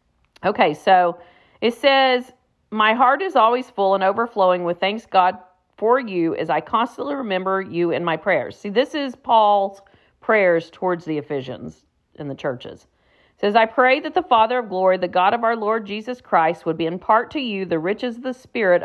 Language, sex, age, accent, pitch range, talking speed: English, female, 40-59, American, 175-235 Hz, 195 wpm